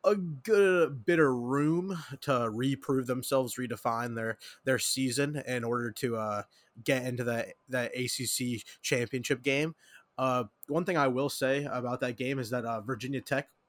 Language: English